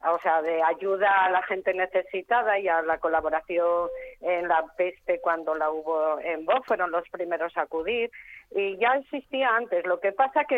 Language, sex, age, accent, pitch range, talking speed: Spanish, female, 40-59, Spanish, 180-225 Hz, 185 wpm